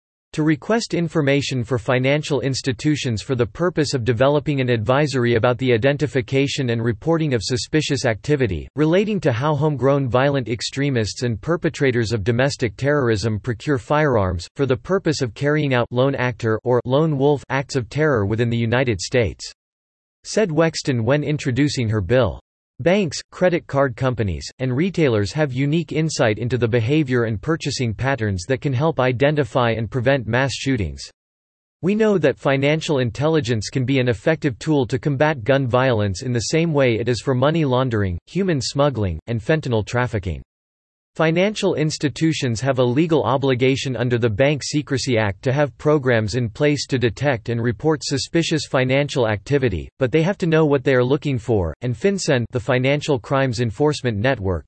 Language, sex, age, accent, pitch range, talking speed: English, male, 40-59, American, 115-150 Hz, 165 wpm